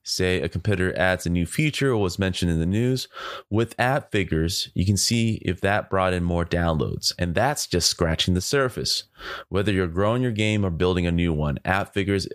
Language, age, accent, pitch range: English, 20-39, American, 85-110 Hz